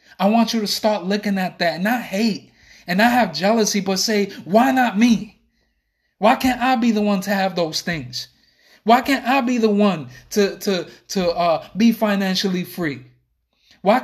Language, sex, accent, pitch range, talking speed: English, male, American, 155-200 Hz, 185 wpm